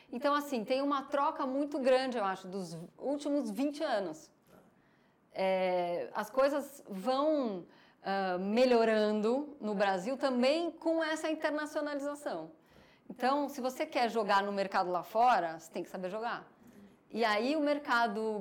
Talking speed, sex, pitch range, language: 140 wpm, female, 200-275 Hz, Portuguese